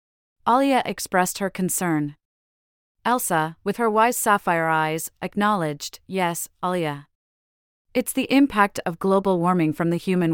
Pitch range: 150-220 Hz